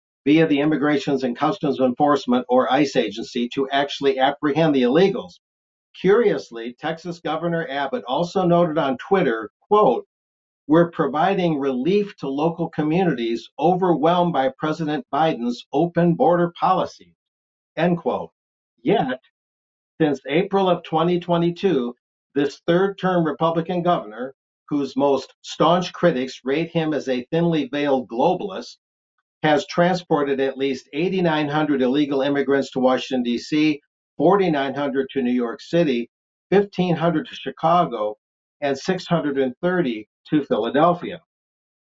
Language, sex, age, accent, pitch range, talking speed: English, male, 50-69, American, 130-170 Hz, 115 wpm